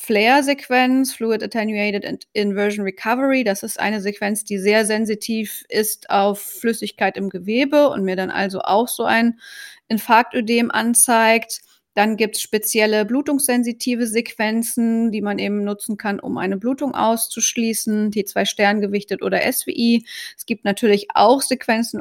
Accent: German